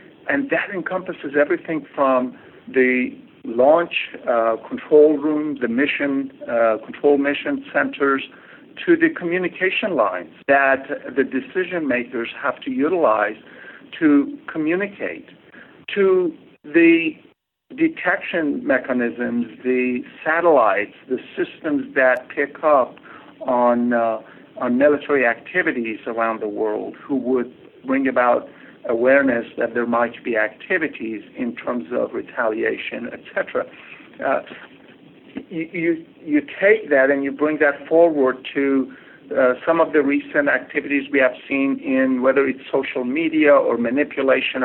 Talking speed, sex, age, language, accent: 120 wpm, male, 60-79, English, American